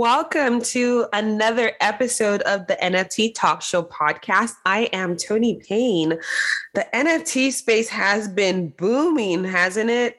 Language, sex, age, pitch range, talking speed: English, female, 20-39, 165-220 Hz, 130 wpm